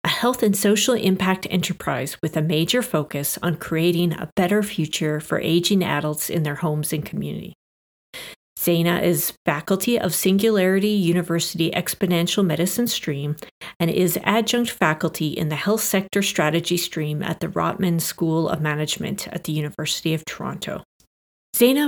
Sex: female